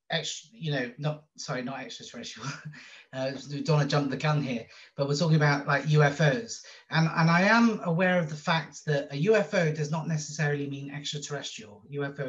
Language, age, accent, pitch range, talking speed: English, 30-49, British, 130-155 Hz, 180 wpm